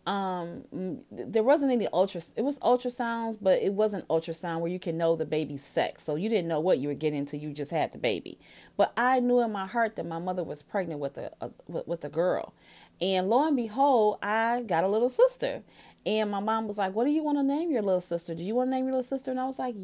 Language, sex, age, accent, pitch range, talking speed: English, female, 30-49, American, 175-245 Hz, 255 wpm